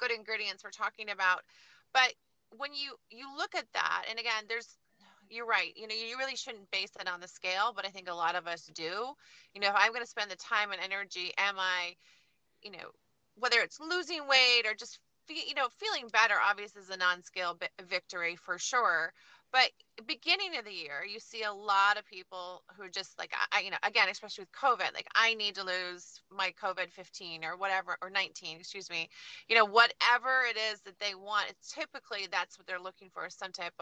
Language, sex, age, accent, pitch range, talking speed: English, female, 30-49, American, 185-235 Hz, 215 wpm